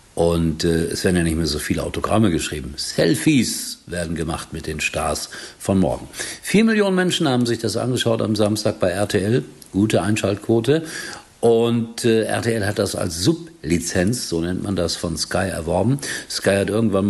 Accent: German